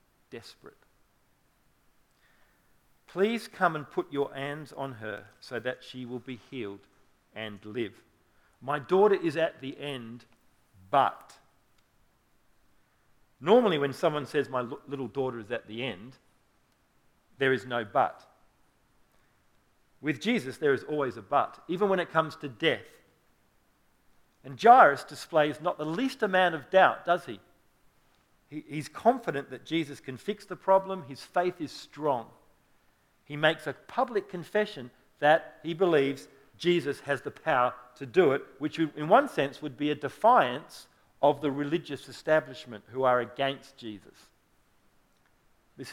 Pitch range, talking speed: 130-170 Hz, 140 wpm